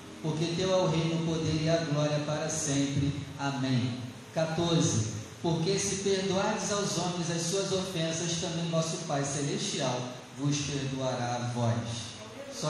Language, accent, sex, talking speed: Portuguese, Brazilian, male, 145 wpm